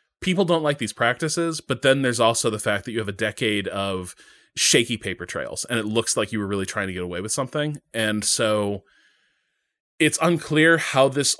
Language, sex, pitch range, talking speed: English, male, 95-135 Hz, 205 wpm